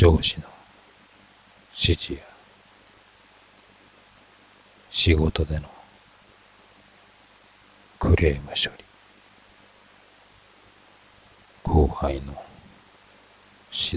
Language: Japanese